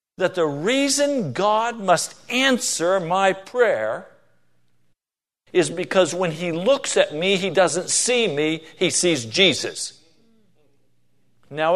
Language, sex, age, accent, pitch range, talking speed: English, male, 50-69, American, 130-190 Hz, 115 wpm